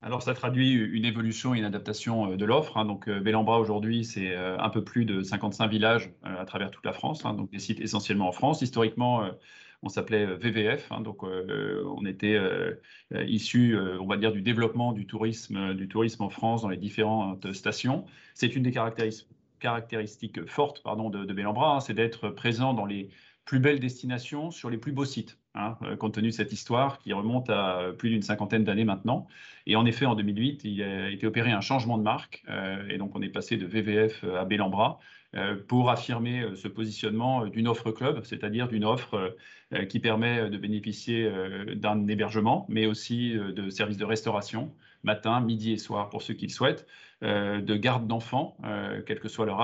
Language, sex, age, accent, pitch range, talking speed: French, male, 30-49, French, 105-120 Hz, 185 wpm